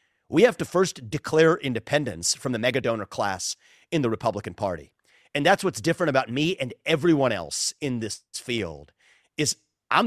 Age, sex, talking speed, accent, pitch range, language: 30-49, male, 175 wpm, American, 115-145 Hz, English